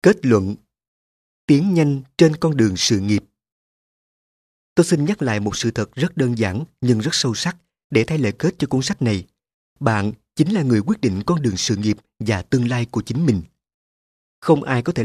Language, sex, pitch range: Vietnamese, male, 105-140 Hz